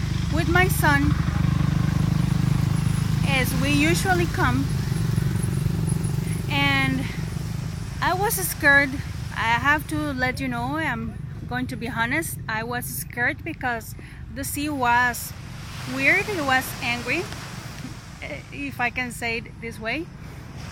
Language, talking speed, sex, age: English, 115 wpm, female, 30-49